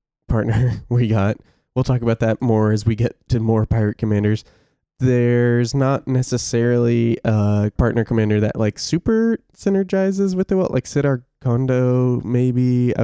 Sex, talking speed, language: male, 150 wpm, English